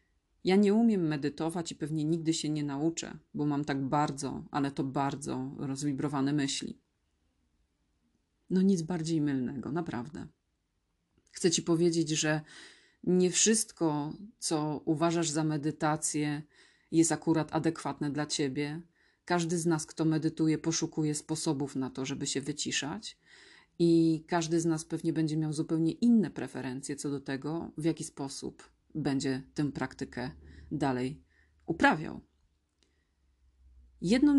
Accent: native